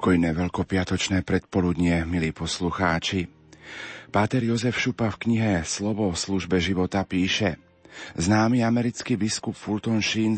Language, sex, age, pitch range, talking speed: Slovak, male, 40-59, 90-115 Hz, 105 wpm